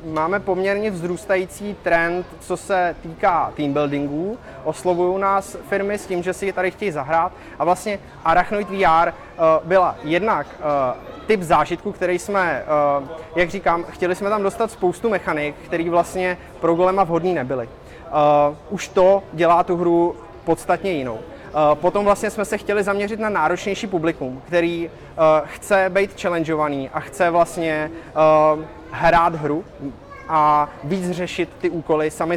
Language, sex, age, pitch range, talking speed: Czech, male, 20-39, 155-185 Hz, 150 wpm